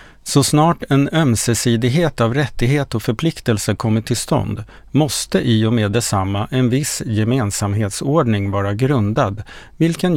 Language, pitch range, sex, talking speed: English, 105-135 Hz, male, 130 wpm